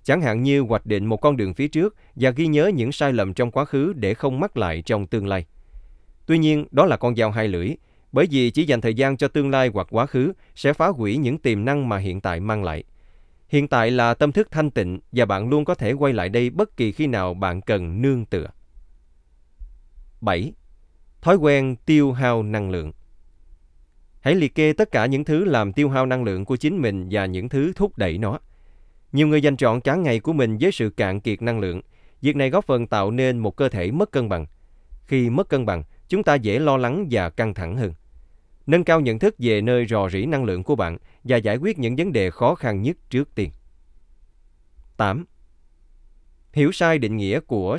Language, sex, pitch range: Vietnamese, male, 90-140 Hz